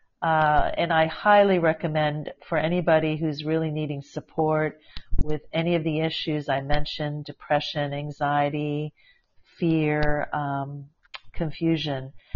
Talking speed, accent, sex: 110 wpm, American, female